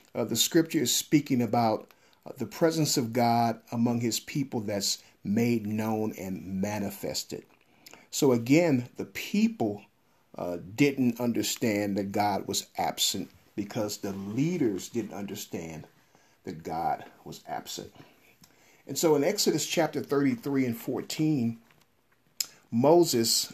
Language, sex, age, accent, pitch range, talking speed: English, male, 50-69, American, 110-150 Hz, 120 wpm